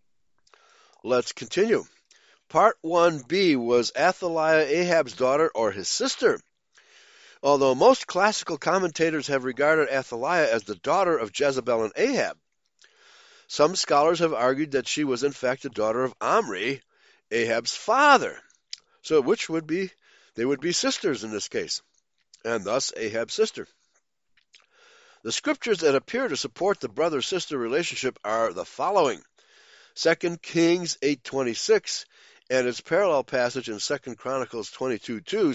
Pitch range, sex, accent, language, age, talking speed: 135-205 Hz, male, American, English, 60-79, 130 wpm